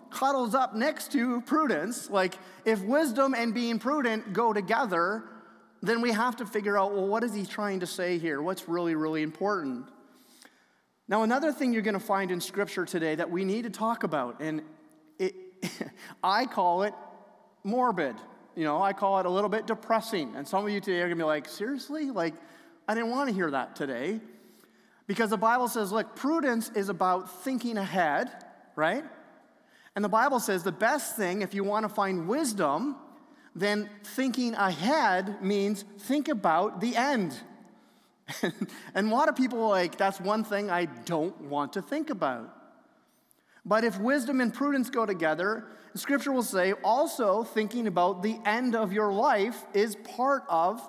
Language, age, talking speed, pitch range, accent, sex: English, 30-49, 175 wpm, 190-245 Hz, American, male